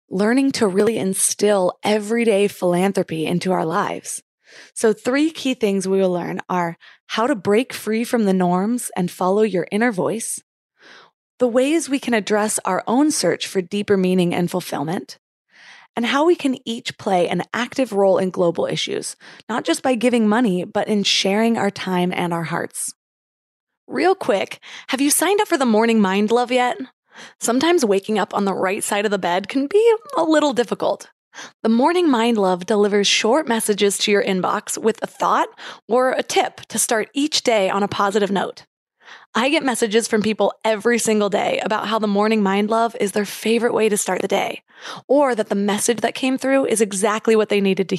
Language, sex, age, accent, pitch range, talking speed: English, female, 20-39, American, 200-245 Hz, 190 wpm